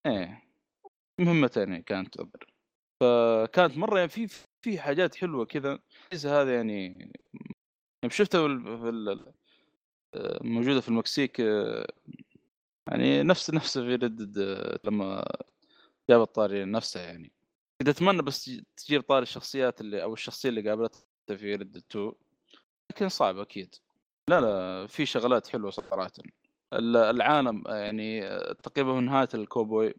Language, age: Arabic, 20-39